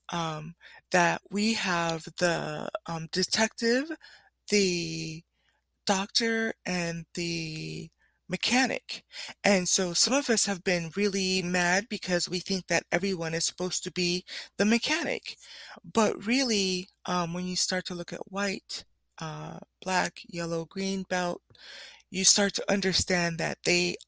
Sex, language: female, English